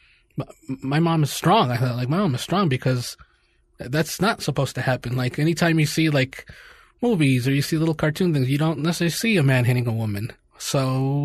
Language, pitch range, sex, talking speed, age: English, 125-145 Hz, male, 210 wpm, 20-39